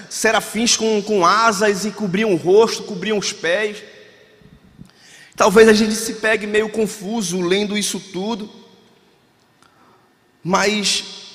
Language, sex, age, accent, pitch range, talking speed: Portuguese, male, 20-39, Brazilian, 160-215 Hz, 115 wpm